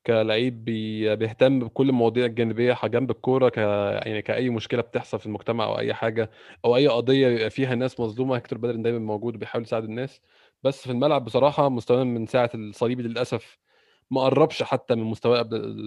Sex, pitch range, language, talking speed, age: male, 115-130 Hz, Arabic, 175 wpm, 20-39